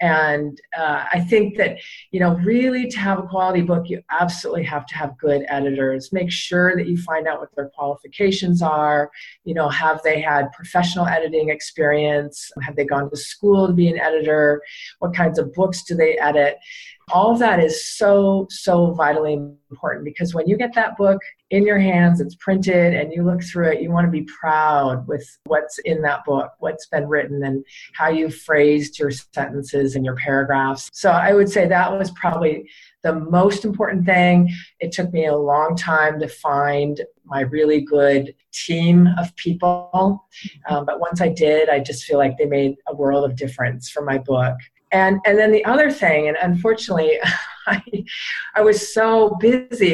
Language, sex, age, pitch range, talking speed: English, female, 40-59, 145-185 Hz, 185 wpm